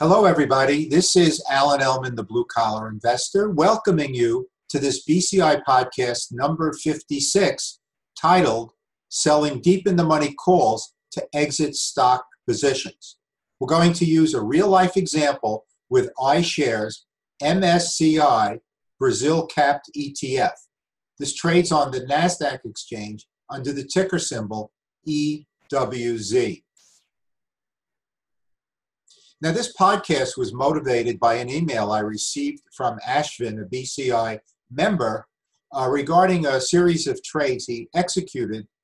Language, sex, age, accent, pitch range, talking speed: English, male, 50-69, American, 125-175 Hz, 120 wpm